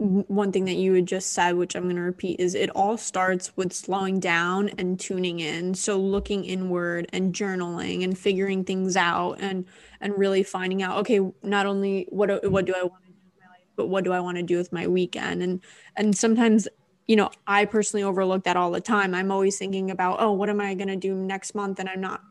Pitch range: 185-200 Hz